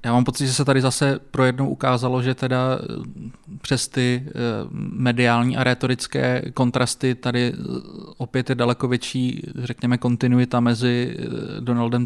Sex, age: male, 20-39